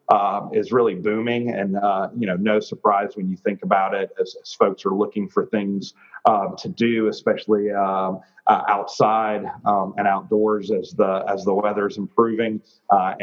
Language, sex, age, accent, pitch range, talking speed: English, male, 40-59, American, 95-110 Hz, 180 wpm